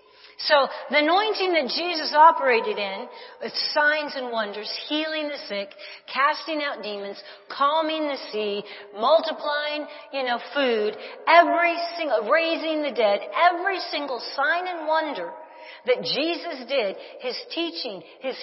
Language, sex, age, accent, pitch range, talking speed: English, female, 40-59, American, 245-335 Hz, 130 wpm